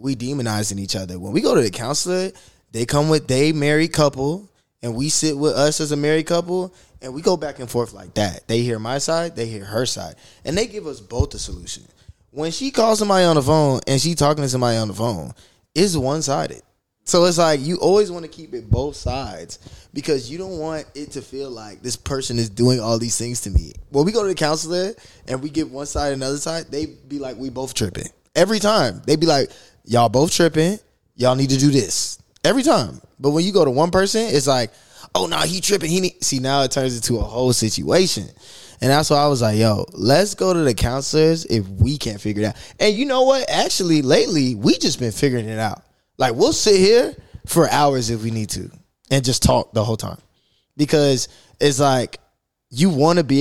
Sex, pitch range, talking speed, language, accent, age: male, 115-160 Hz, 230 wpm, English, American, 20-39